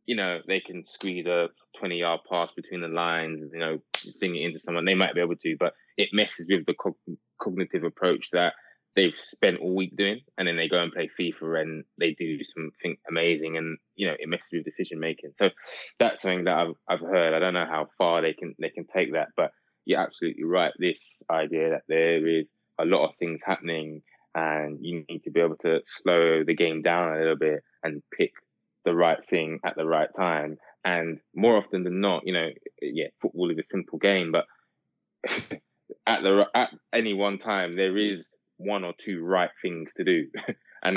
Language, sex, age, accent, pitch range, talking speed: English, male, 20-39, British, 80-95 Hz, 205 wpm